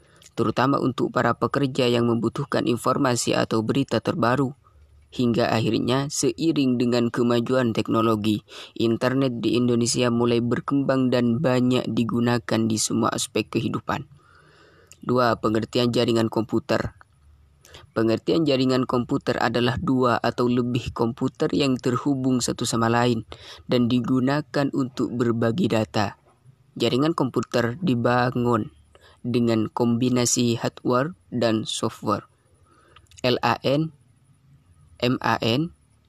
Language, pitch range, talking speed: Indonesian, 115-130 Hz, 100 wpm